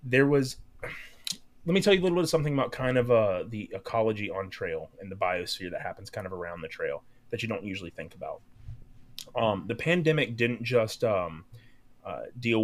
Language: English